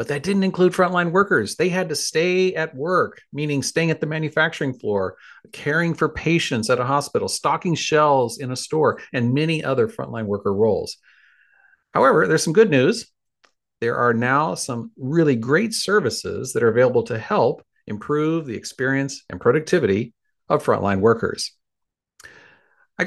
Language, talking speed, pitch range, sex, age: English, 160 wpm, 120-180 Hz, male, 40-59